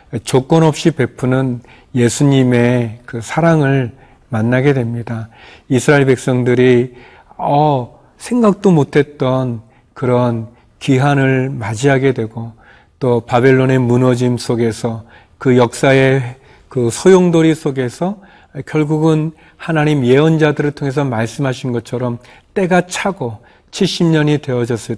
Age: 40-59